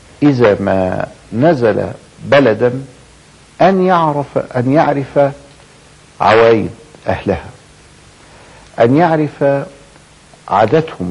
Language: Arabic